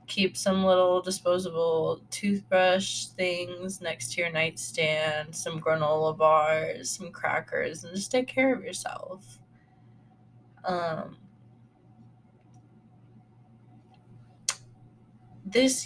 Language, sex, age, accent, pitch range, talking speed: English, female, 20-39, American, 125-185 Hz, 85 wpm